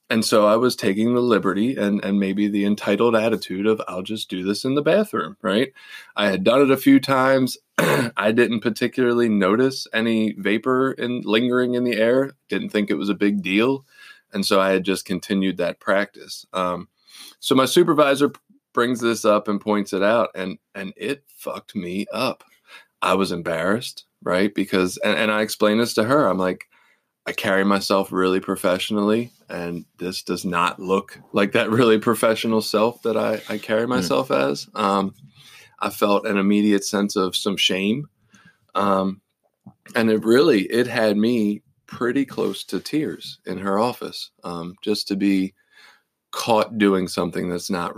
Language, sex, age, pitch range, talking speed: English, male, 20-39, 95-115 Hz, 175 wpm